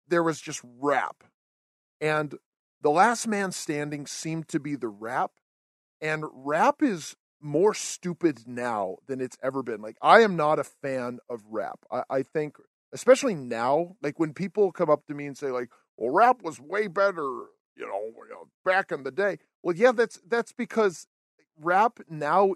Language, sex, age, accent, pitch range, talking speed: English, male, 40-59, American, 135-205 Hz, 175 wpm